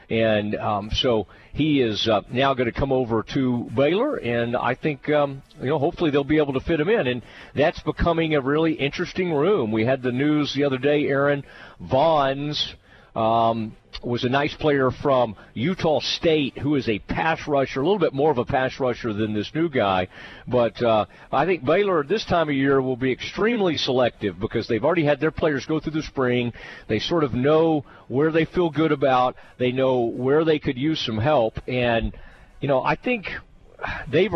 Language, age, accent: English, 40-59, American